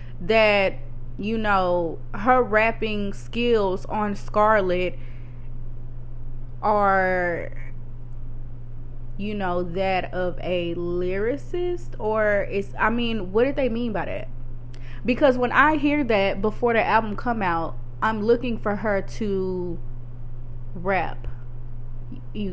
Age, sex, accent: 20-39, female, American